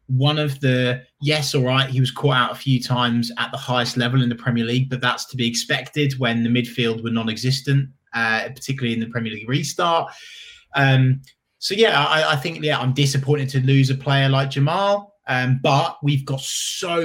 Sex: male